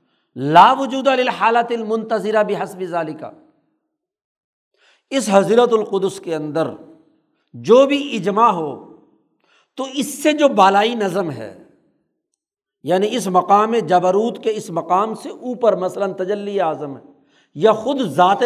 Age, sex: 60-79, male